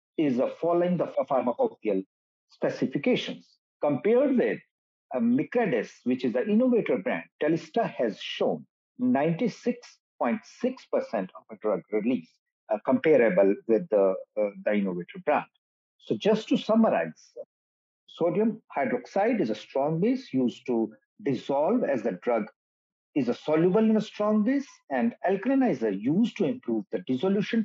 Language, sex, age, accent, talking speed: English, male, 50-69, Indian, 135 wpm